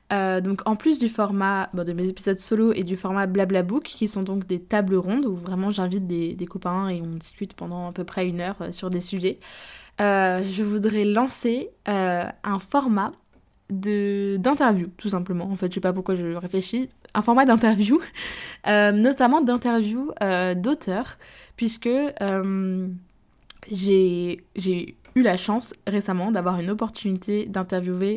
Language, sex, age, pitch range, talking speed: French, female, 20-39, 185-225 Hz, 165 wpm